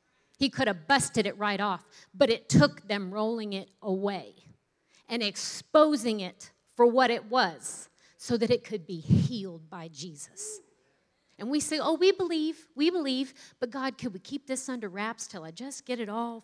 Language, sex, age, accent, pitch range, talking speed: English, female, 40-59, American, 175-245 Hz, 185 wpm